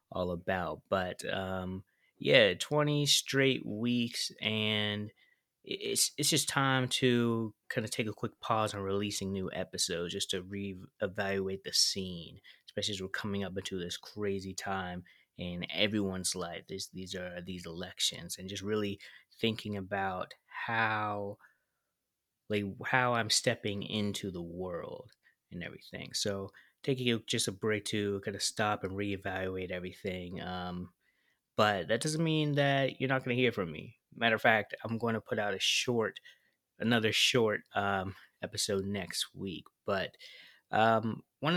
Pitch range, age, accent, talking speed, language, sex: 95-115 Hz, 20-39, American, 150 wpm, English, male